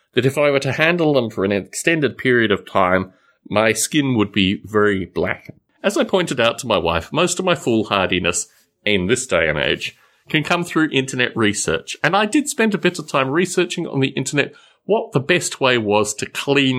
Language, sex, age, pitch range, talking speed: English, male, 30-49, 110-170 Hz, 210 wpm